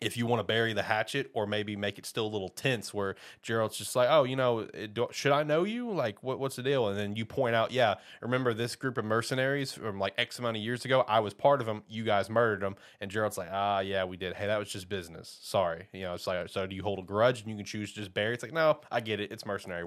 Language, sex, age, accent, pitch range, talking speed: English, male, 20-39, American, 100-125 Hz, 295 wpm